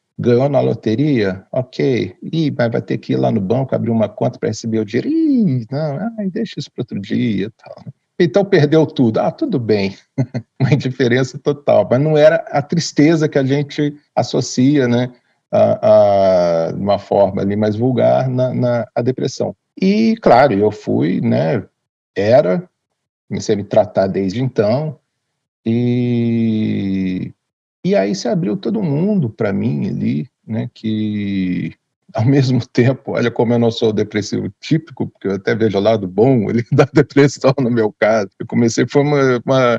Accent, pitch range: Brazilian, 105-145 Hz